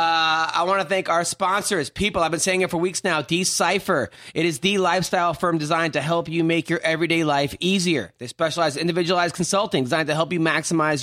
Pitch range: 165-195 Hz